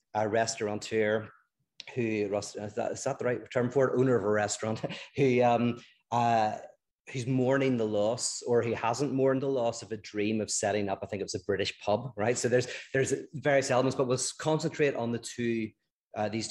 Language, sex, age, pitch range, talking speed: English, male, 30-49, 105-125 Hz, 195 wpm